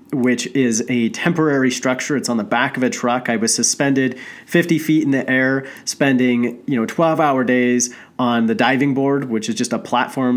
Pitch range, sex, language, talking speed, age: 120-145 Hz, male, English, 195 wpm, 30-49